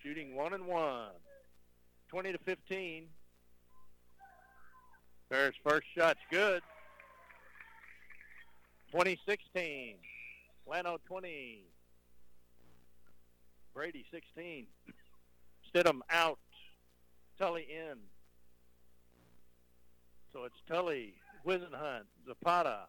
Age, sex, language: 50-69, male, English